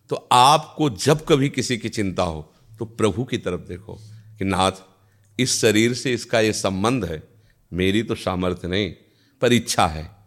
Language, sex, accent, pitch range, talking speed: Hindi, male, native, 95-120 Hz, 170 wpm